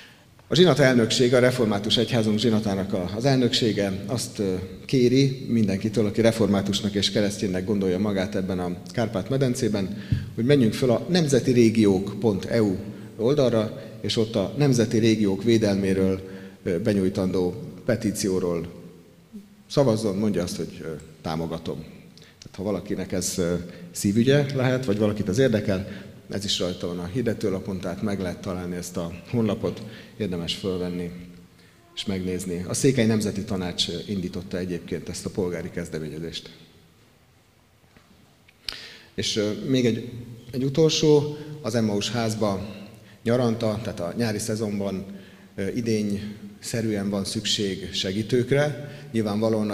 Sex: male